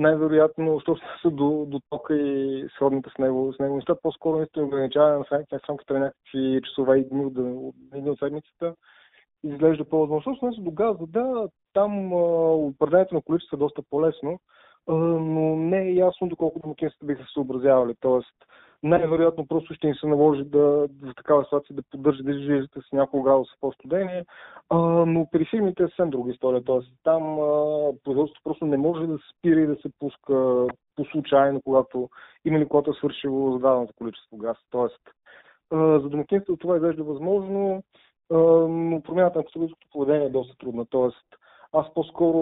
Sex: male